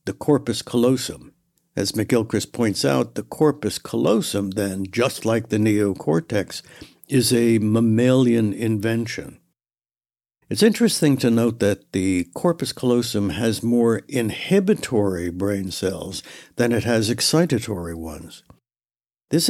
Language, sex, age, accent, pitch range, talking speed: English, male, 60-79, American, 105-130 Hz, 115 wpm